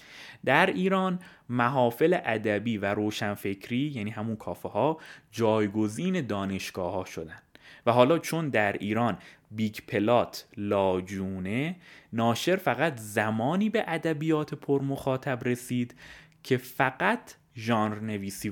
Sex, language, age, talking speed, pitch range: male, Persian, 20-39, 110 wpm, 105-150 Hz